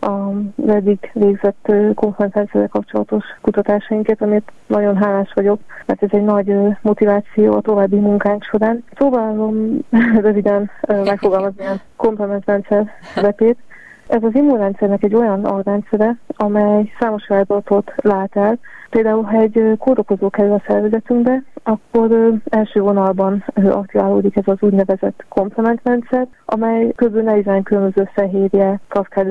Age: 30-49